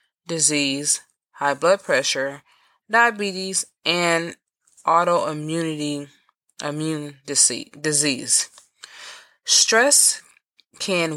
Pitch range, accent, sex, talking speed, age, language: 150-200 Hz, American, female, 65 wpm, 20-39, English